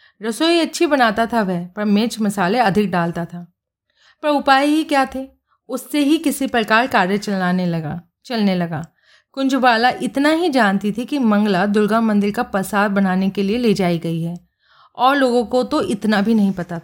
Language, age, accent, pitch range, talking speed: Hindi, 30-49, native, 200-265 Hz, 180 wpm